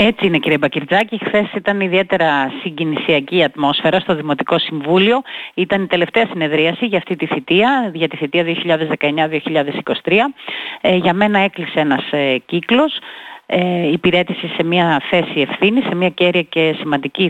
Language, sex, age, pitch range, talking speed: Greek, female, 30-49, 155-210 Hz, 145 wpm